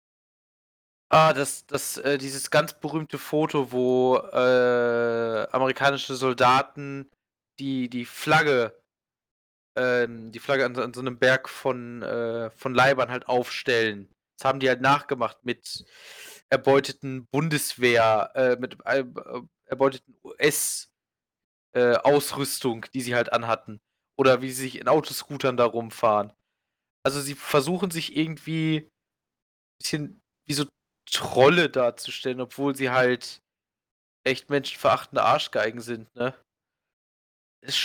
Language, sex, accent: German, male, German